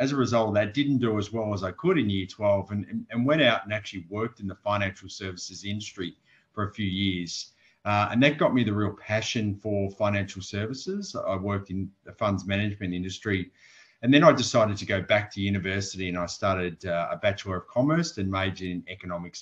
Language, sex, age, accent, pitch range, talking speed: English, male, 30-49, Australian, 95-115 Hz, 215 wpm